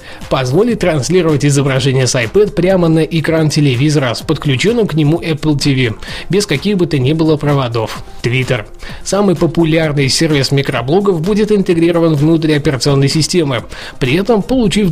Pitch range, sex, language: 140-175 Hz, male, Russian